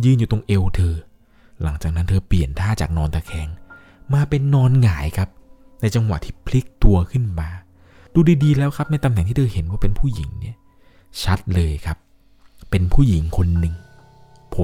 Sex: male